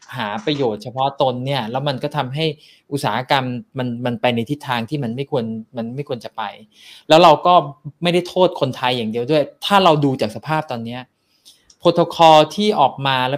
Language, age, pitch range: Thai, 20-39, 125-160 Hz